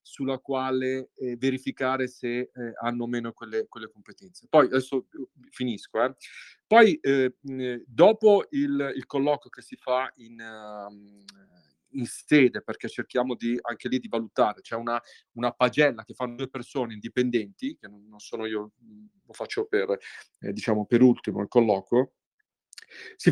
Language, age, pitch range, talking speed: Italian, 40-59, 120-150 Hz, 155 wpm